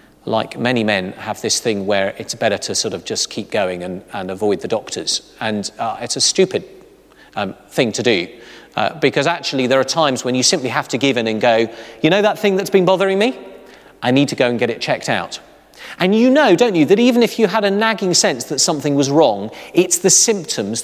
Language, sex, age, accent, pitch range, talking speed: English, male, 40-59, British, 140-200 Hz, 235 wpm